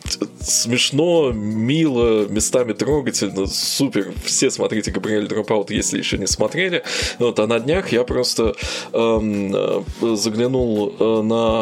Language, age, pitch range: Russian, 20-39, 100-120 Hz